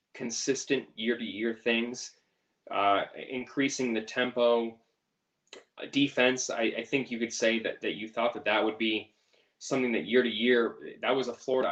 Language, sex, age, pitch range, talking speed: English, male, 10-29, 115-145 Hz, 150 wpm